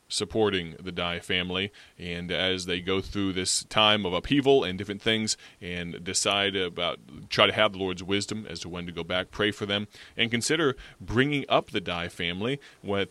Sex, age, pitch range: male, 30-49, 95-115 Hz